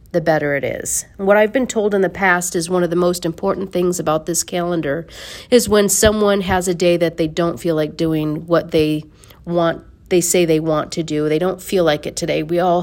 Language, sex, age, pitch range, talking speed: English, female, 40-59, 160-185 Hz, 235 wpm